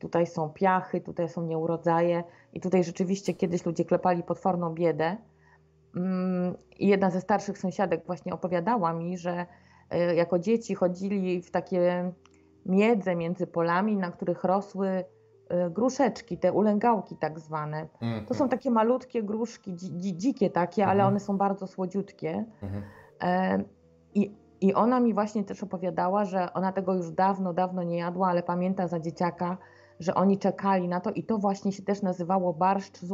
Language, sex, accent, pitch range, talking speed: Polish, female, native, 175-205 Hz, 150 wpm